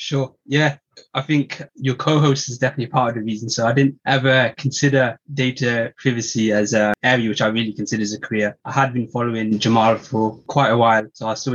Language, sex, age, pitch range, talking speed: English, male, 20-39, 105-130 Hz, 215 wpm